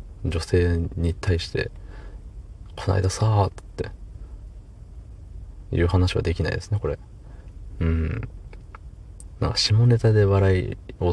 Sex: male